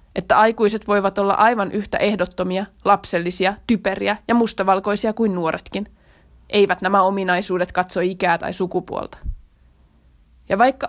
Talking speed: 120 wpm